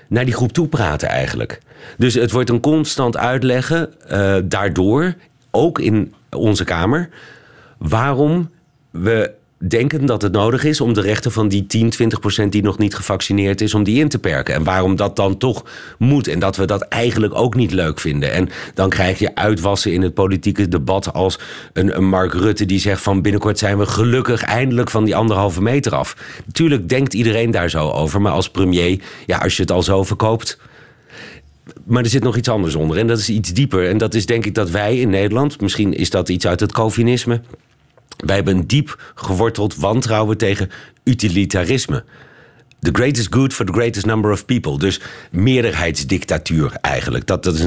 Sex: male